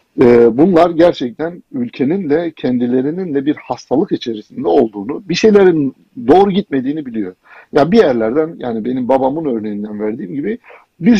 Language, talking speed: Turkish, 140 wpm